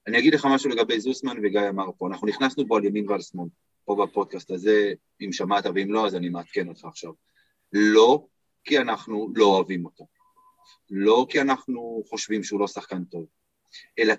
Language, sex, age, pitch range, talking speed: Hebrew, male, 30-49, 100-165 Hz, 180 wpm